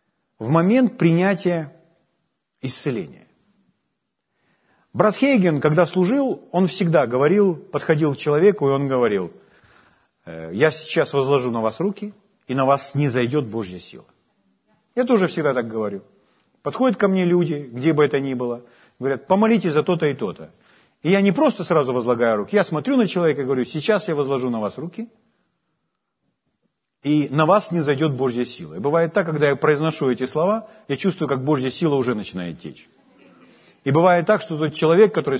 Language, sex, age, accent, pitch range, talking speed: Ukrainian, male, 40-59, native, 140-205 Hz, 170 wpm